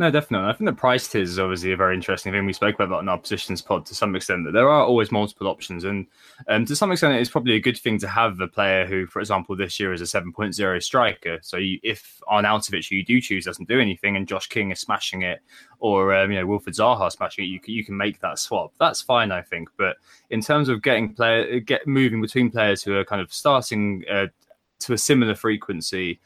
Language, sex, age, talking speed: English, male, 20-39, 250 wpm